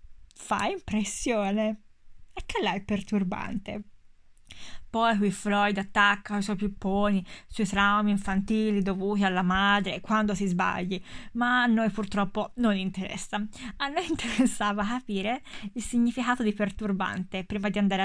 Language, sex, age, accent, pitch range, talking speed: Italian, female, 20-39, native, 195-240 Hz, 130 wpm